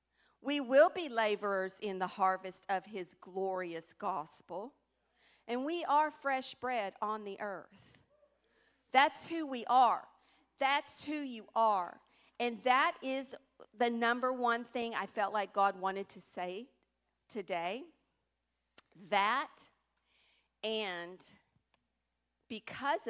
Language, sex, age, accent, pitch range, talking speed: English, female, 50-69, American, 205-280 Hz, 115 wpm